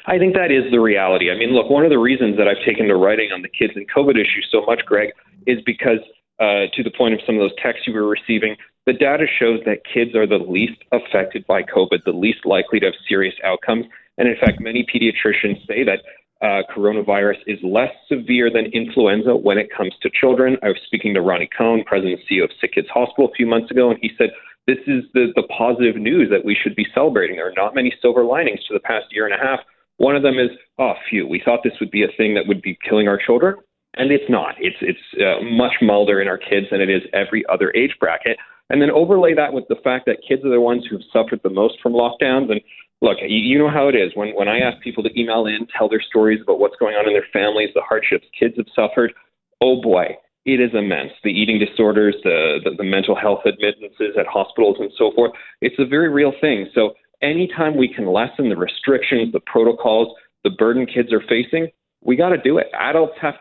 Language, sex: English, male